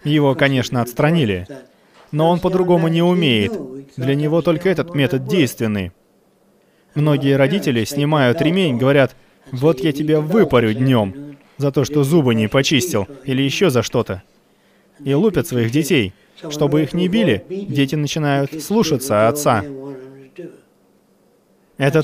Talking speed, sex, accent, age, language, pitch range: 130 wpm, male, native, 20-39, Russian, 125-160 Hz